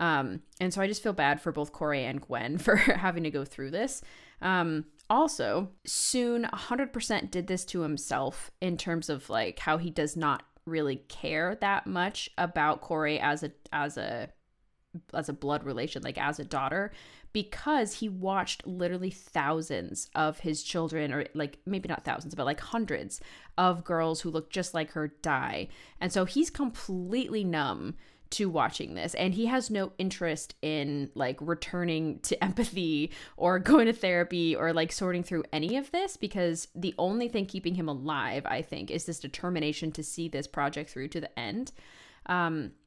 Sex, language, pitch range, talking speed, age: female, English, 155-205 Hz, 175 wpm, 20-39